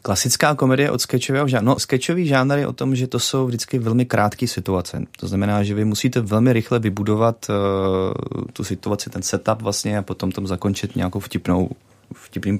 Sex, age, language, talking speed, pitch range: male, 30-49, Czech, 185 wpm, 95-115 Hz